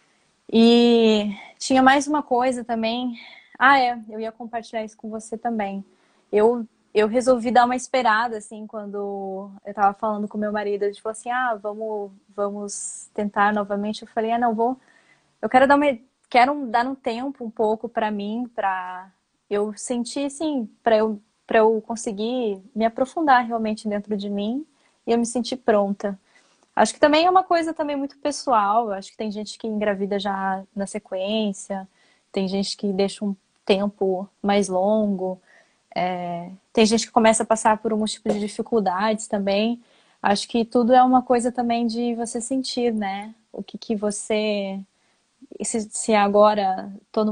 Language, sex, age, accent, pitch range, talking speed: English, female, 20-39, Brazilian, 200-240 Hz, 170 wpm